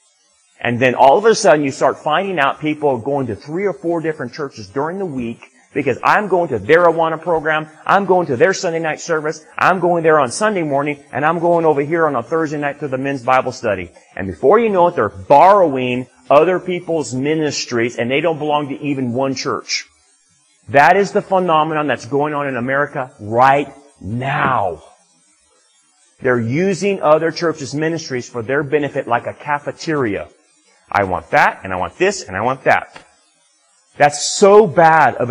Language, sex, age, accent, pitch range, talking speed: English, male, 30-49, American, 130-170 Hz, 190 wpm